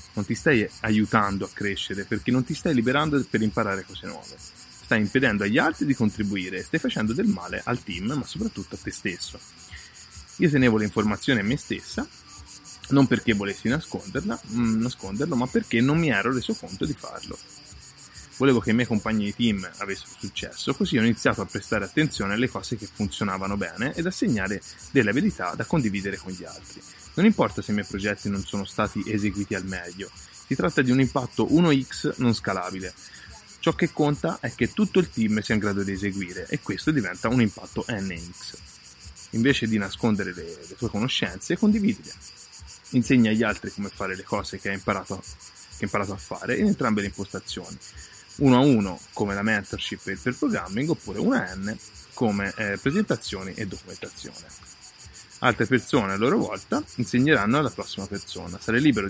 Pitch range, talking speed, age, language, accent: 95-125 Hz, 180 wpm, 20-39, Italian, native